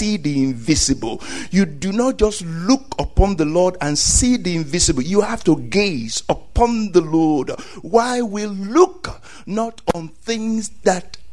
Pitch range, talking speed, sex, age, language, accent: 175-245 Hz, 150 wpm, male, 60-79, English, Nigerian